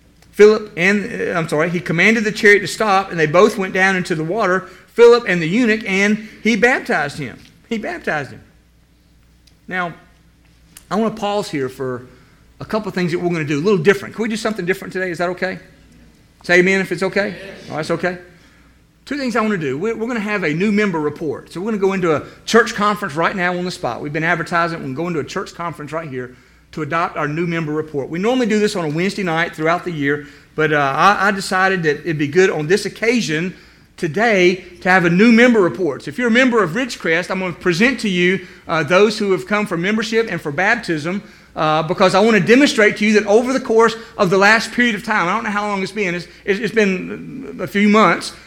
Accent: American